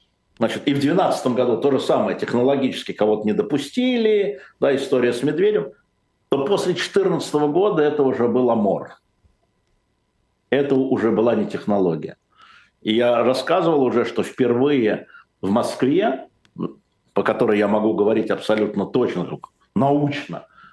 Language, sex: Russian, male